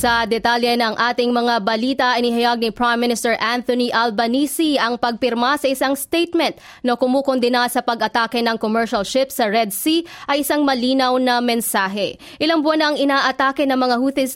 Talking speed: 165 wpm